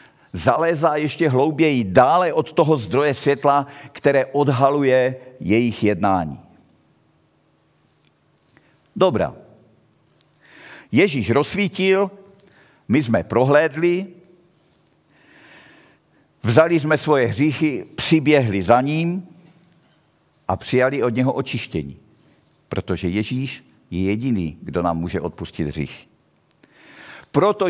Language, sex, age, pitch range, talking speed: Czech, male, 50-69, 110-160 Hz, 85 wpm